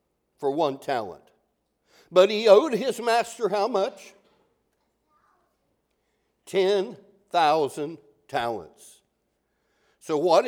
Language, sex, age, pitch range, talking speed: English, male, 60-79, 150-245 Hz, 80 wpm